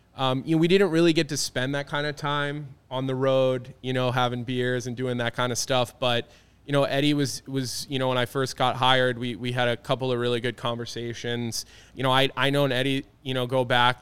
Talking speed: 250 wpm